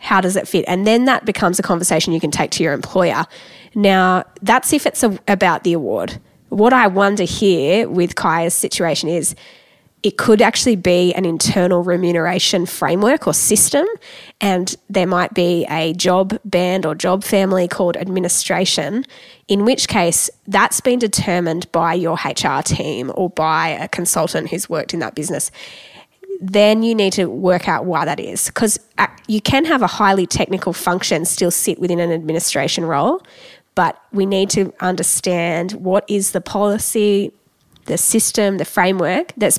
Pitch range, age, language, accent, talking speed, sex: 175-210 Hz, 20-39, English, Australian, 165 wpm, female